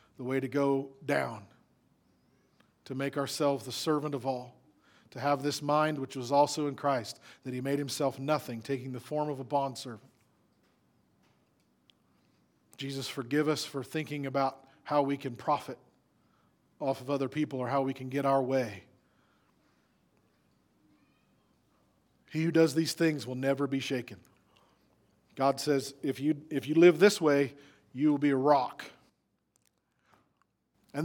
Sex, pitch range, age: male, 135-170 Hz, 40-59